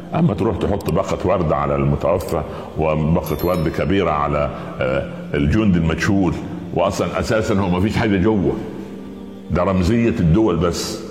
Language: Arabic